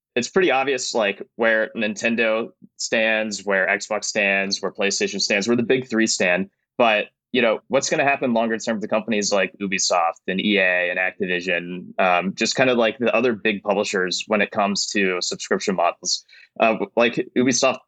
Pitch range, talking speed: 100-120 Hz, 180 wpm